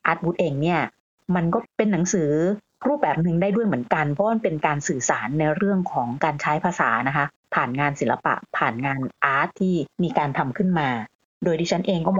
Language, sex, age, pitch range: Thai, female, 30-49, 150-195 Hz